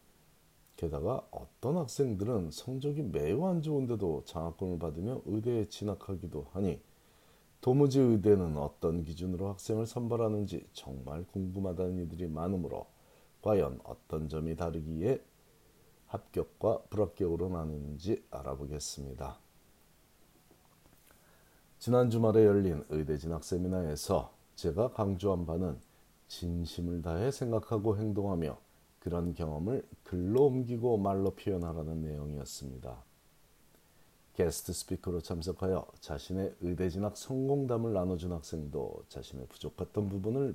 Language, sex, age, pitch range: Korean, male, 40-59, 80-105 Hz